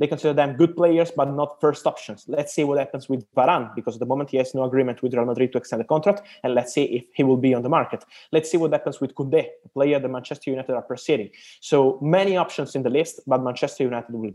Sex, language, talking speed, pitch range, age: male, English, 265 wpm, 120-150 Hz, 20-39